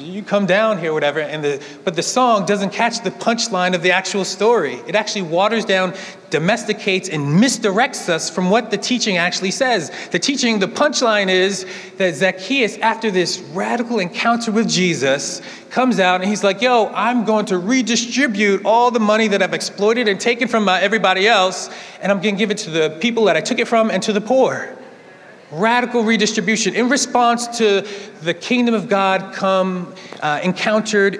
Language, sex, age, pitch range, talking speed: English, male, 30-49, 170-220 Hz, 185 wpm